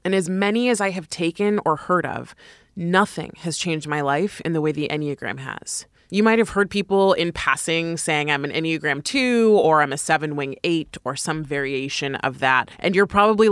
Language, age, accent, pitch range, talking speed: English, 20-39, American, 150-195 Hz, 205 wpm